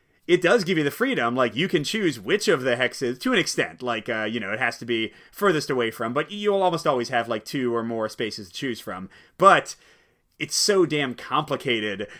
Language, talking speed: English, 225 wpm